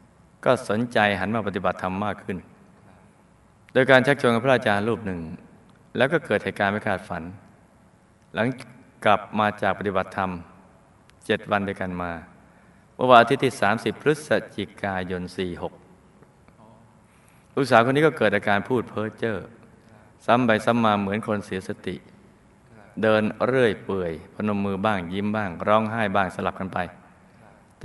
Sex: male